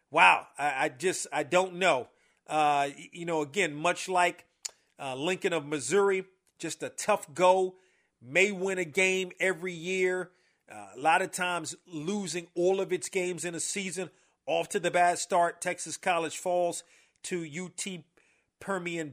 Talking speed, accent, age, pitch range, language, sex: 160 wpm, American, 40-59, 170-195 Hz, English, male